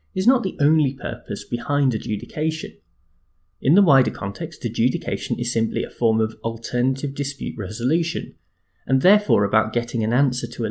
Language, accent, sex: English, British, male